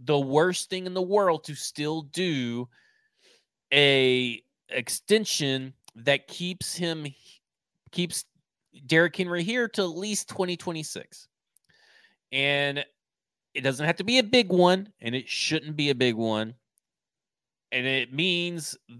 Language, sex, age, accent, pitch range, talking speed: English, male, 30-49, American, 130-170 Hz, 130 wpm